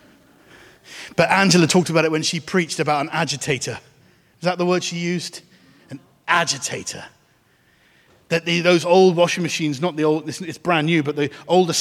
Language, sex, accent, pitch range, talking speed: English, male, British, 150-180 Hz, 175 wpm